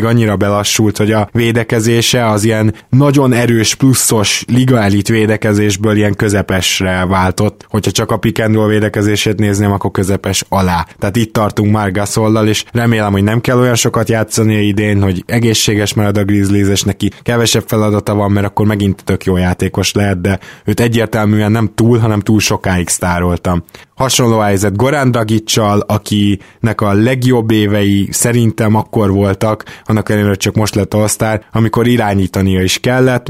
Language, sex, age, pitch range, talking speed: Hungarian, male, 20-39, 100-110 Hz, 150 wpm